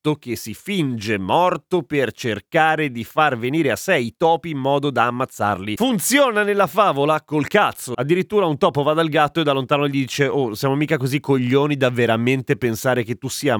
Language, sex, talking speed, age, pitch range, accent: Italian, male, 195 wpm, 30-49, 115-160 Hz, native